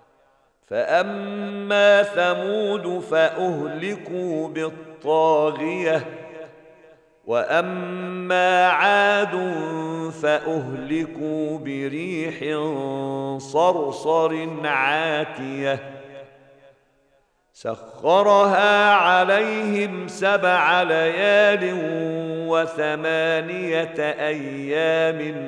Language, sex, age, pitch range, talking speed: Arabic, male, 50-69, 150-170 Hz, 40 wpm